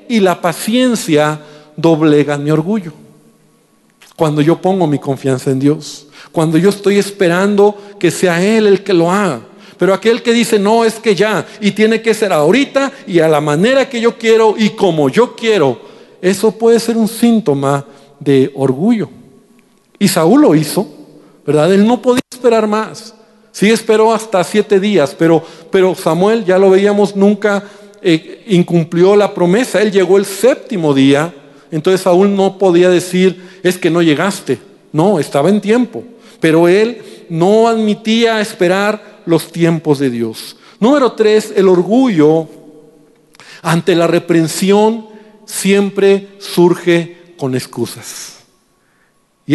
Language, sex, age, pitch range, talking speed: Spanish, male, 50-69, 160-215 Hz, 145 wpm